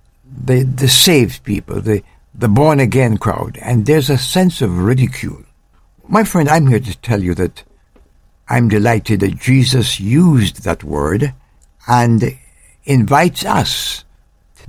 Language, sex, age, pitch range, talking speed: English, male, 60-79, 95-125 Hz, 135 wpm